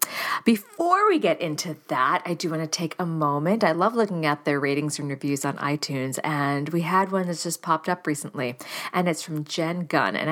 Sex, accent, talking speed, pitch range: female, American, 215 wpm, 150-195 Hz